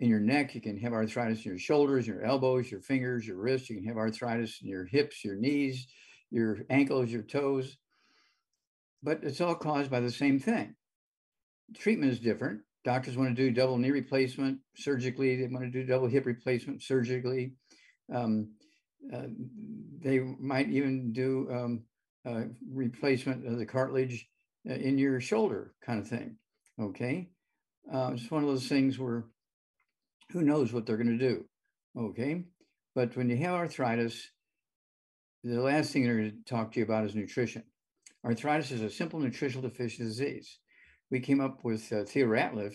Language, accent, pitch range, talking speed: English, American, 115-135 Hz, 170 wpm